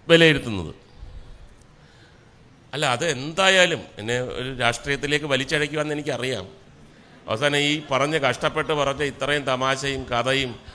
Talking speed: 90 wpm